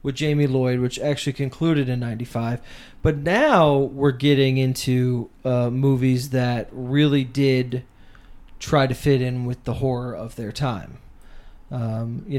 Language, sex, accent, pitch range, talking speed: English, male, American, 125-185 Hz, 145 wpm